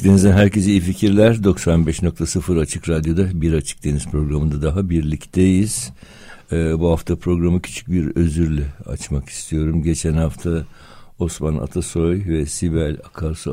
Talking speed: 130 wpm